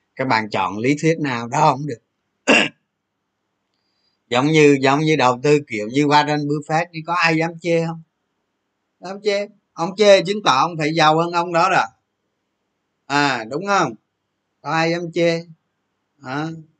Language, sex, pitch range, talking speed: Vietnamese, male, 125-165 Hz, 165 wpm